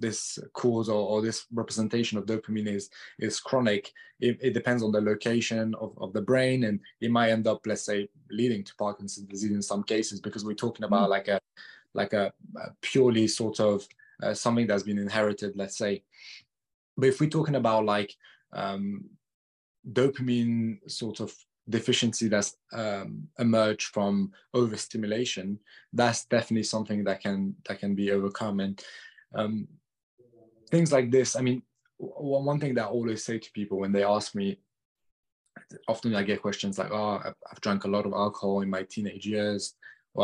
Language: English